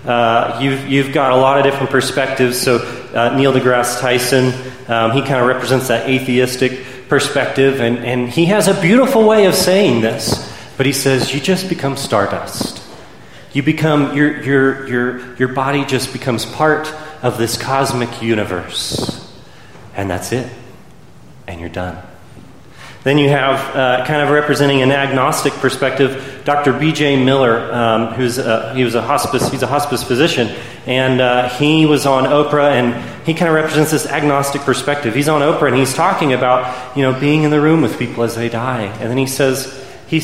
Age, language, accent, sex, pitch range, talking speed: 30-49, English, American, male, 120-145 Hz, 180 wpm